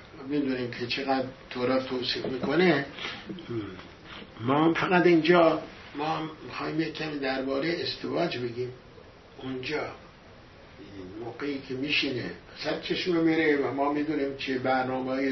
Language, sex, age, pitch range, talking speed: English, male, 60-79, 135-180 Hz, 105 wpm